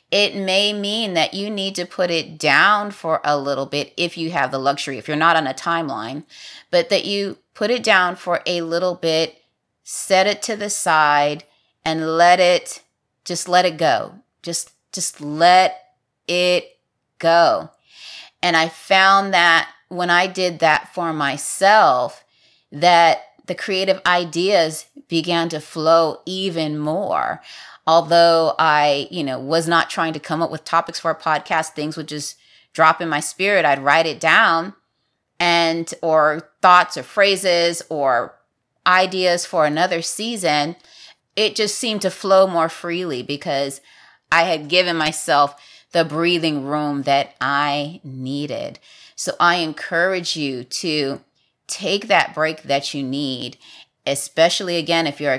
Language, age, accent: English, 30-49, American